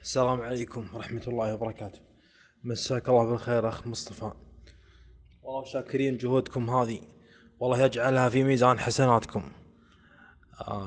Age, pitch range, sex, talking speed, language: 20-39, 100-125 Hz, male, 110 wpm, Arabic